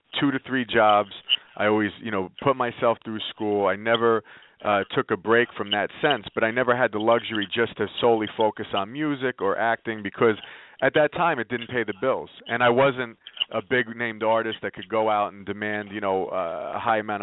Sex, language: male, English